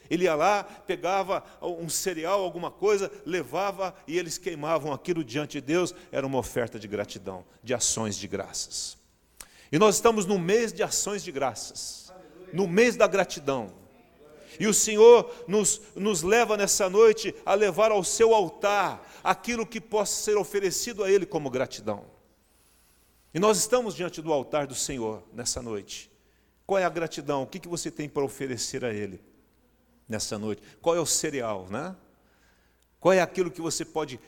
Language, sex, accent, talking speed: Portuguese, male, Brazilian, 165 wpm